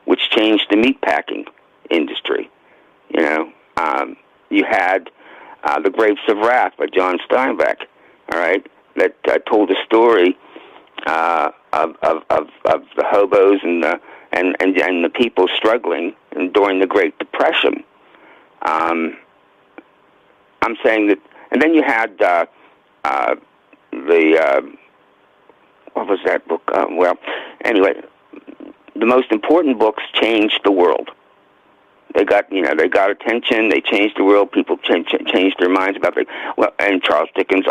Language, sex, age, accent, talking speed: English, male, 60-79, American, 150 wpm